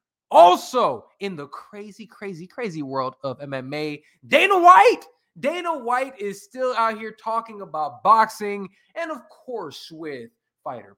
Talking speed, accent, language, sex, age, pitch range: 135 wpm, American, English, male, 20-39, 160-230 Hz